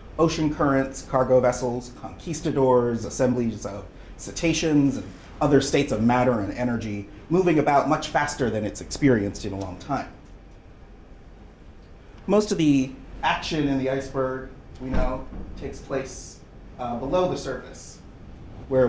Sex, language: male, English